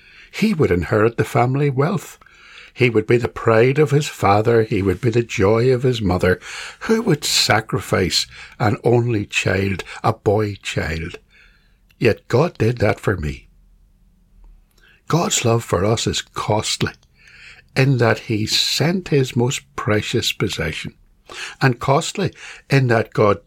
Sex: male